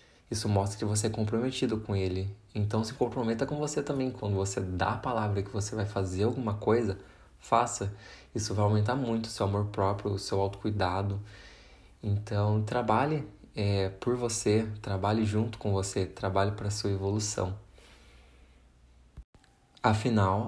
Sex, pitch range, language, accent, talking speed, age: male, 100-115 Hz, Portuguese, Brazilian, 150 wpm, 20-39